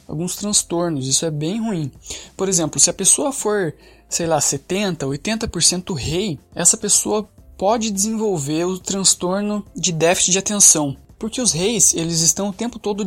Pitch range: 165-205 Hz